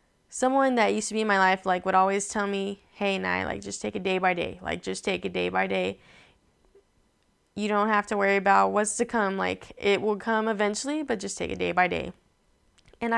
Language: English